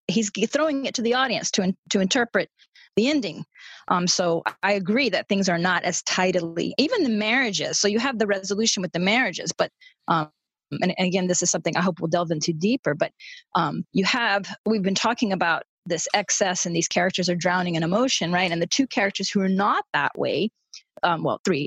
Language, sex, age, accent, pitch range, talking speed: English, female, 30-49, American, 175-230 Hz, 210 wpm